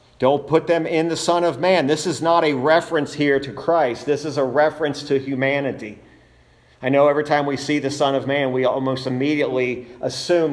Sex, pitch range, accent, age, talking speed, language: male, 125-155 Hz, American, 50-69, 205 wpm, English